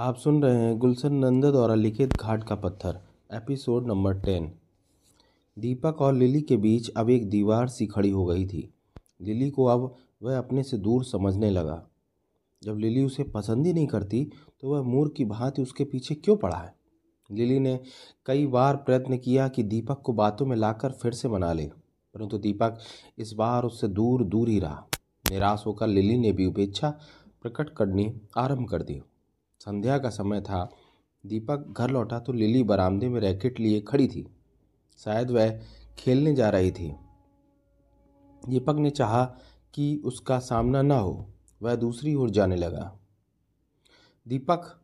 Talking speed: 165 wpm